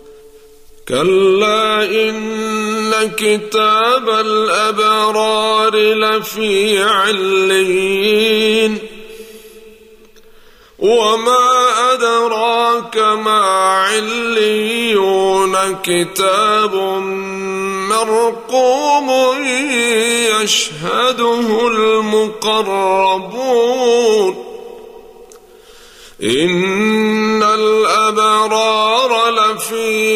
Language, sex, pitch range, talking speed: Arabic, male, 210-240 Hz, 30 wpm